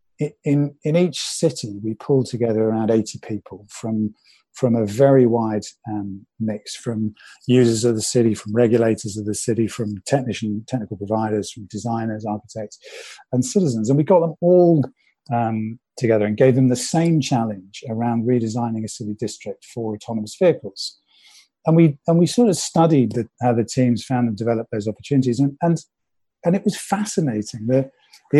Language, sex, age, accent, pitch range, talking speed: English, male, 50-69, British, 110-140 Hz, 165 wpm